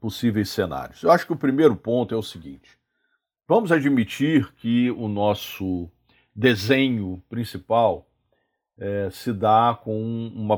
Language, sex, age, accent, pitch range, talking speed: Portuguese, male, 50-69, Brazilian, 100-120 Hz, 125 wpm